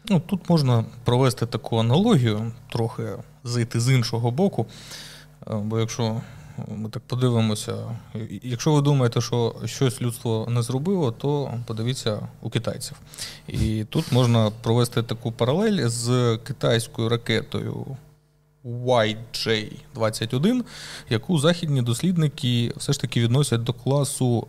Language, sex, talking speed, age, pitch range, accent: Ukrainian, male, 115 wpm, 30-49, 115-145 Hz, native